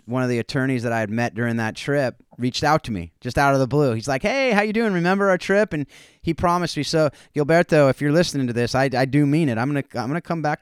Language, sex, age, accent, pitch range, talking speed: English, male, 30-49, American, 115-155 Hz, 295 wpm